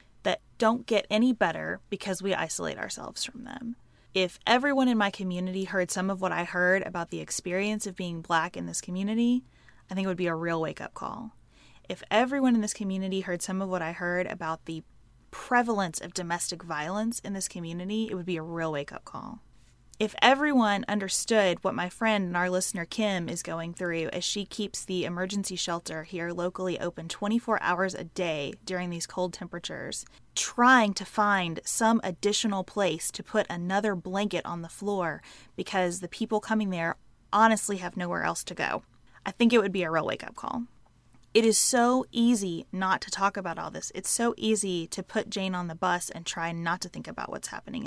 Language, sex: English, female